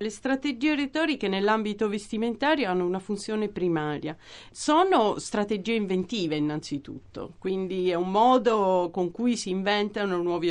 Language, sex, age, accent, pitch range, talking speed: Italian, female, 40-59, native, 165-220 Hz, 125 wpm